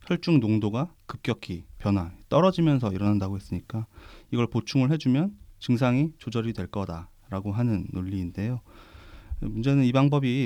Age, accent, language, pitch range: 30-49, native, Korean, 100-130 Hz